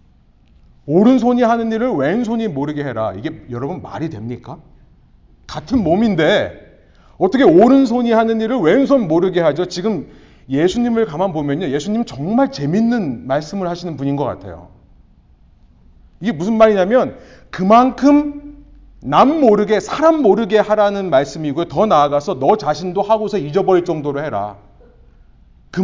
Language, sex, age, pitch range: Korean, male, 30-49, 140-220 Hz